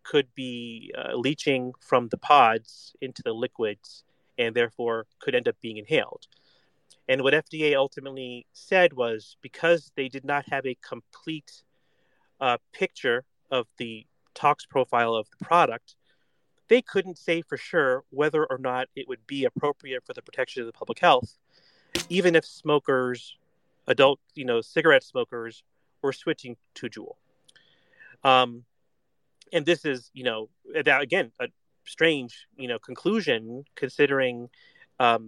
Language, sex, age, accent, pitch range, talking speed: English, male, 30-49, American, 120-155 Hz, 145 wpm